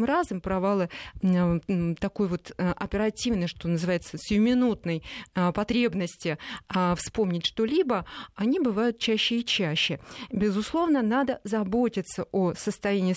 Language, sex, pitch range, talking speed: Russian, female, 190-240 Hz, 95 wpm